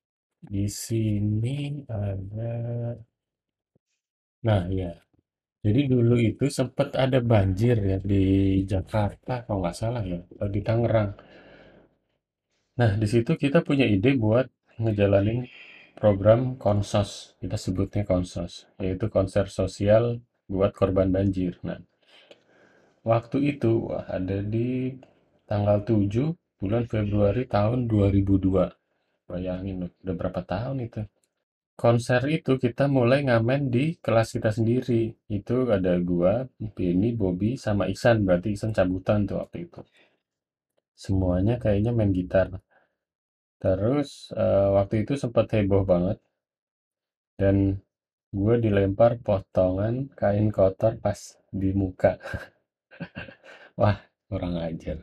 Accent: native